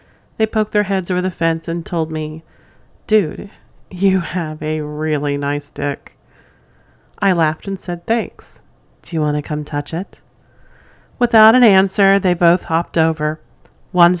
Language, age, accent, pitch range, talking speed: English, 40-59, American, 160-195 Hz, 155 wpm